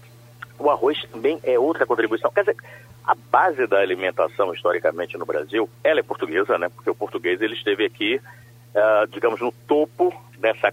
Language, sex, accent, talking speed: Portuguese, male, Brazilian, 170 wpm